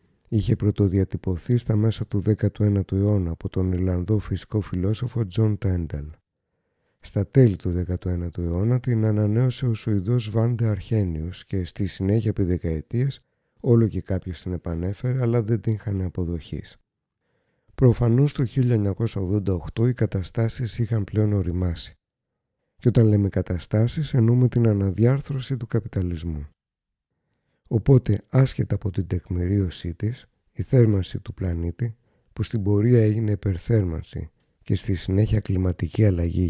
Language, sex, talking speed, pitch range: Greek, male, 125 wpm, 95-115 Hz